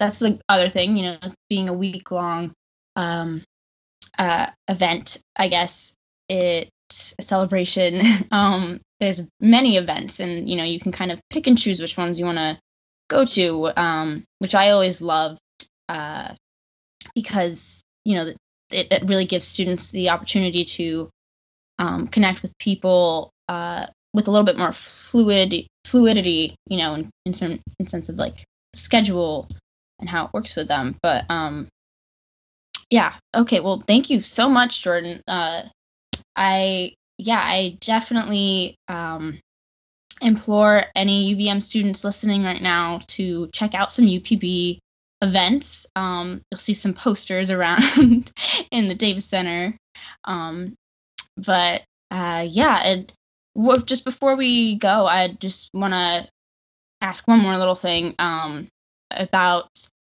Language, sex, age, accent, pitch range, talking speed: English, female, 10-29, American, 170-205 Hz, 145 wpm